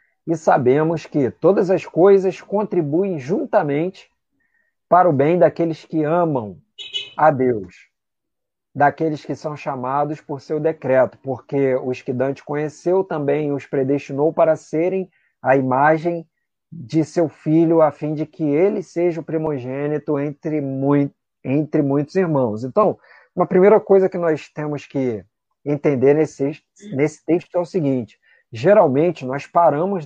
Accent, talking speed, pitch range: Brazilian, 140 wpm, 140-175 Hz